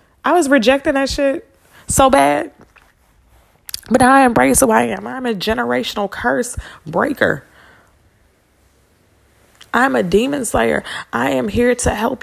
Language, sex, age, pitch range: English, female, 20-39, 195-265 Hz